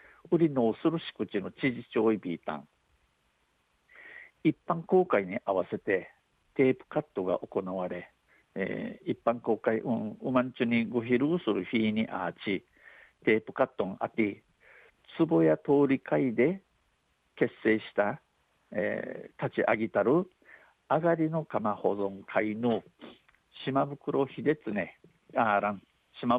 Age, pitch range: 60-79, 110-145 Hz